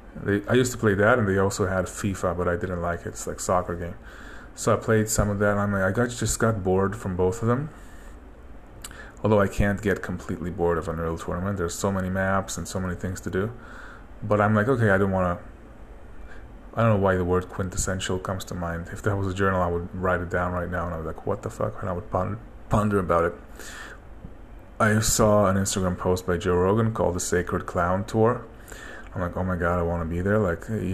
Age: 20-39